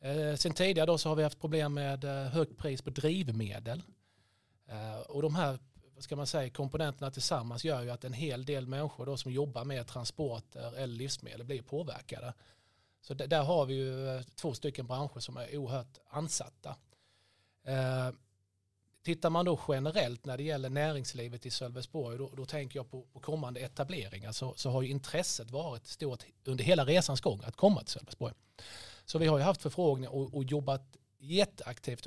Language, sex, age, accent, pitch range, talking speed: Swedish, male, 30-49, native, 120-145 Hz, 170 wpm